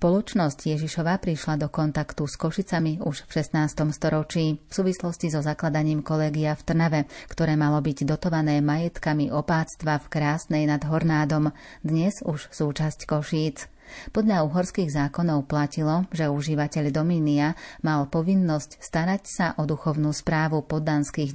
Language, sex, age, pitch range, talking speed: Slovak, female, 30-49, 150-165 Hz, 130 wpm